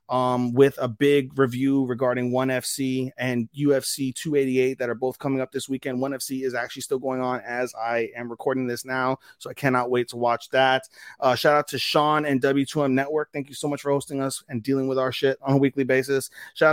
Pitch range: 125-140 Hz